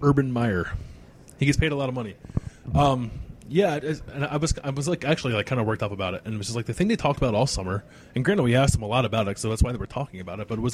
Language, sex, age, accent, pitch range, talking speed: English, male, 20-39, American, 105-130 Hz, 320 wpm